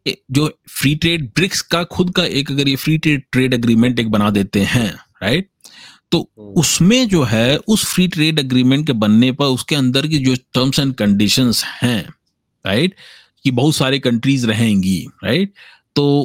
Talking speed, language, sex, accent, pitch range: 170 wpm, English, male, Indian, 115-155 Hz